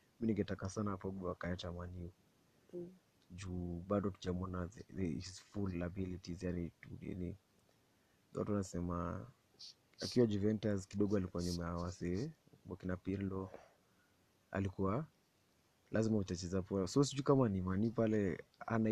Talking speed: 120 wpm